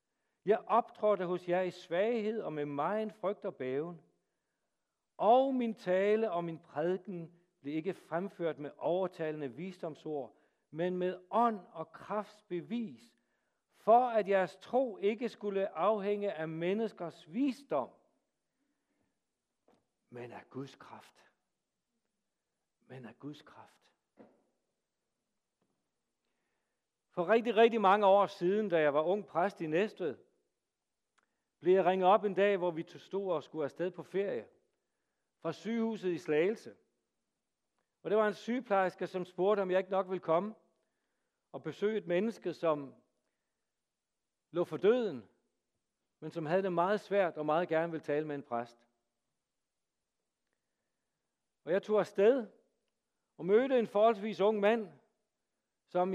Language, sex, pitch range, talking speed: Danish, male, 165-215 Hz, 135 wpm